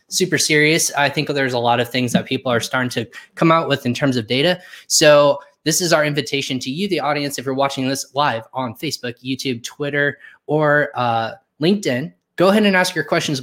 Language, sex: English, male